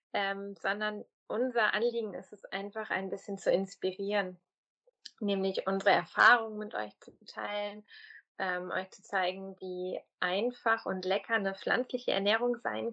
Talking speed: 140 wpm